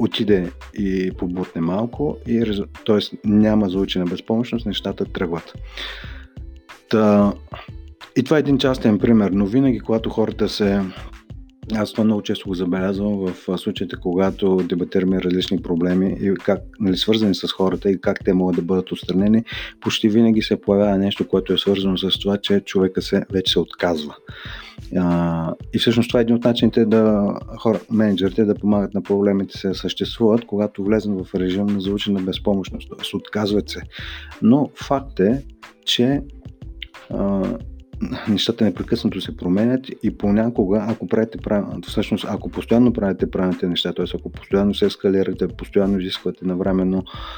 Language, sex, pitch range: Bulgarian, male, 90-110 Hz